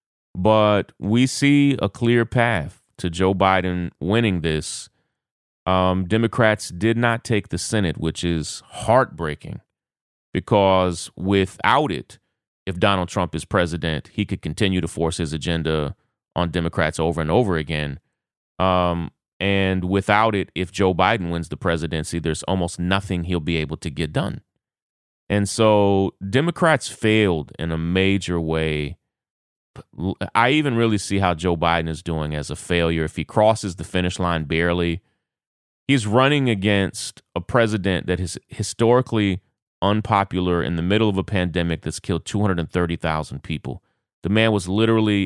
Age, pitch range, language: 30-49, 85-105 Hz, English